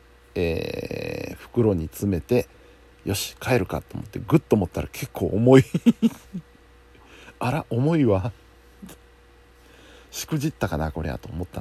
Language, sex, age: Japanese, male, 60-79